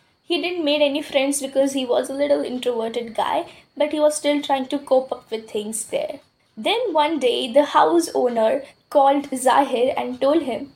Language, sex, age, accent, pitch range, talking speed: English, female, 10-29, Indian, 225-295 Hz, 190 wpm